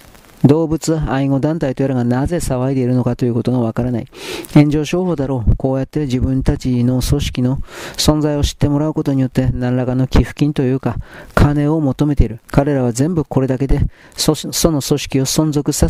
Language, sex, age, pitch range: Japanese, male, 40-59, 130-150 Hz